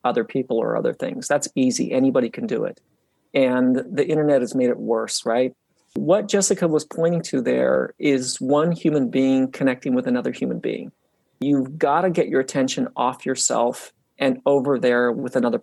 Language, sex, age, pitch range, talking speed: English, male, 40-59, 130-165 Hz, 180 wpm